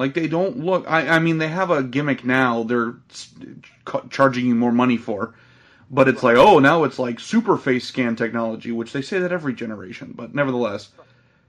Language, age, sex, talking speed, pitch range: English, 30-49, male, 195 wpm, 125-160 Hz